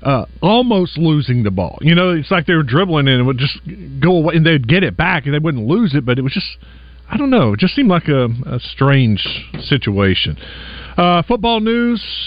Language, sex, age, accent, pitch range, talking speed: English, male, 40-59, American, 110-165 Hz, 225 wpm